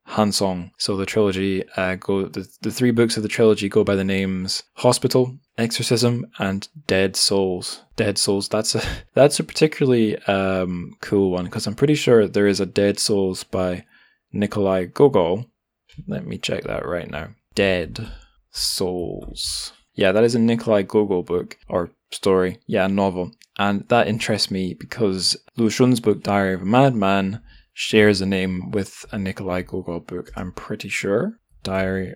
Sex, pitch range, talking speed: male, 95-110 Hz, 160 wpm